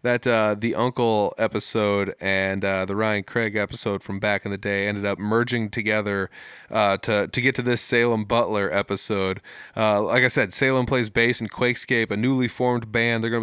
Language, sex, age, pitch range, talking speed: English, male, 30-49, 100-120 Hz, 195 wpm